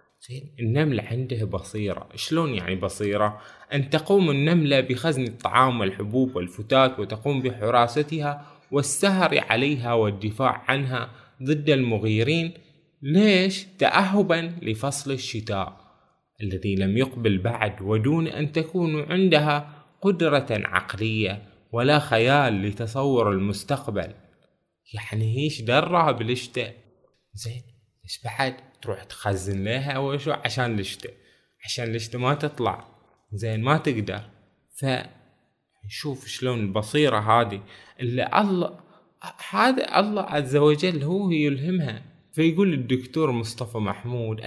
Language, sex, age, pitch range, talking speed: Arabic, male, 20-39, 115-150 Hz, 100 wpm